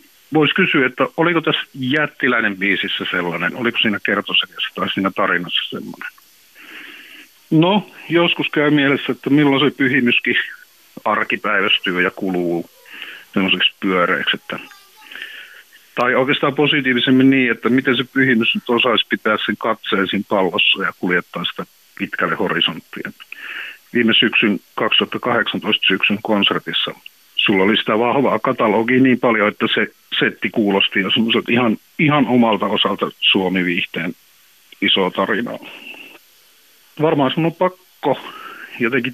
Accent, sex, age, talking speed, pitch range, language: native, male, 50-69, 115 wpm, 100-140 Hz, Finnish